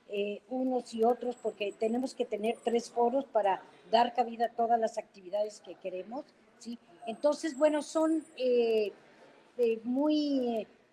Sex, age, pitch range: female, 50-69, 205-255 Hz